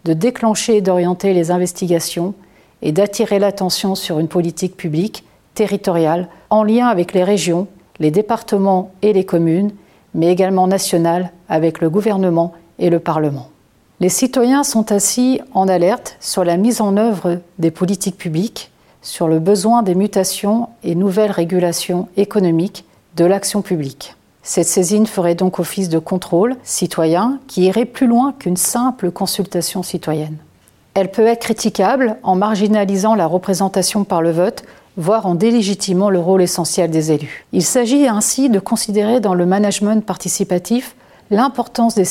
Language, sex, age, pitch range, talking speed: French, female, 40-59, 175-215 Hz, 150 wpm